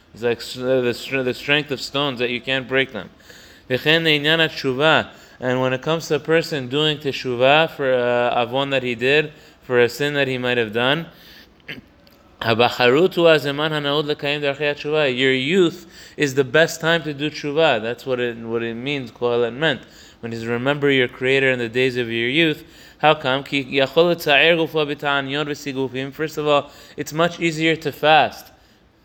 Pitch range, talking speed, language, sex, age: 130-145 Hz, 150 wpm, English, male, 20-39